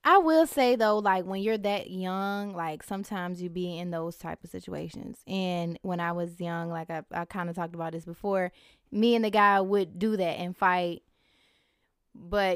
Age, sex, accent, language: 20-39, female, American, English